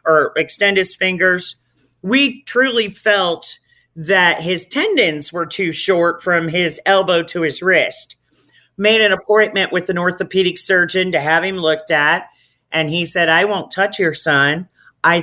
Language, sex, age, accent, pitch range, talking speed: English, male, 40-59, American, 165-195 Hz, 160 wpm